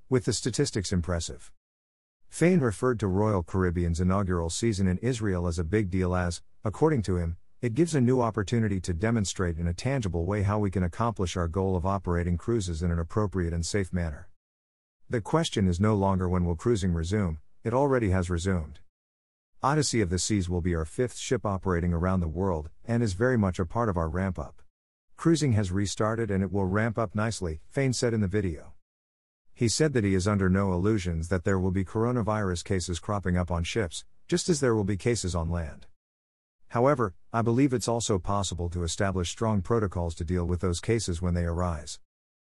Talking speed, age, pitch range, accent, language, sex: 200 wpm, 50-69, 85-110 Hz, American, English, male